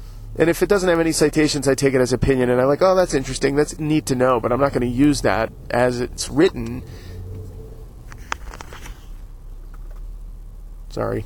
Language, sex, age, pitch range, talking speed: English, male, 30-49, 110-145 Hz, 175 wpm